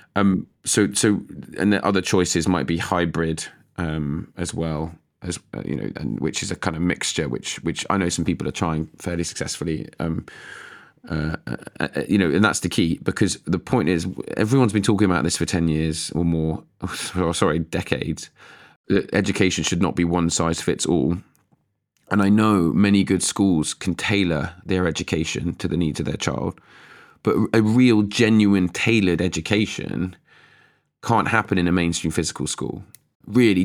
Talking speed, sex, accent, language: 175 wpm, male, British, English